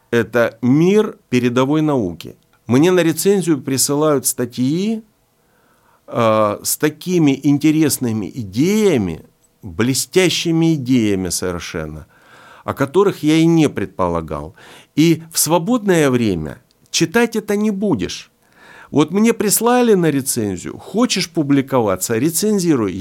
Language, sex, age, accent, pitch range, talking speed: Russian, male, 50-69, native, 125-165 Hz, 100 wpm